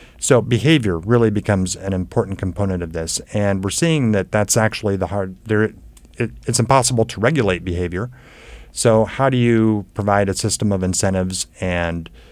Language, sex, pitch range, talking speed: English, male, 90-115 Hz, 155 wpm